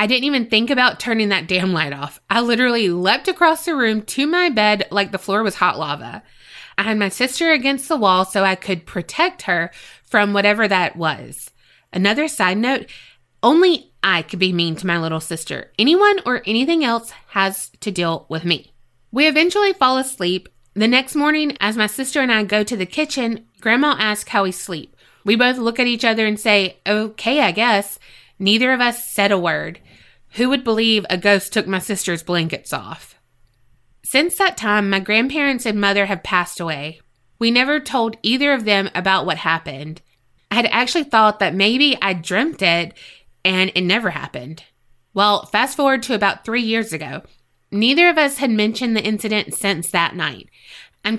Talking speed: 190 wpm